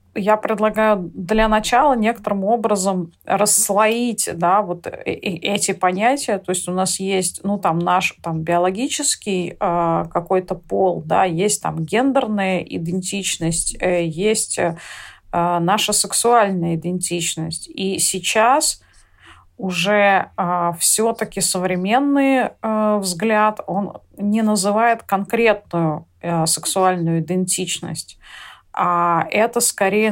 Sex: female